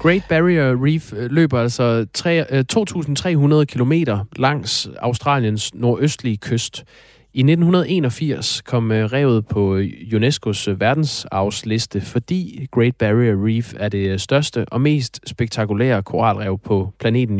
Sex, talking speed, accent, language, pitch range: male, 105 wpm, native, Danish, 110-140 Hz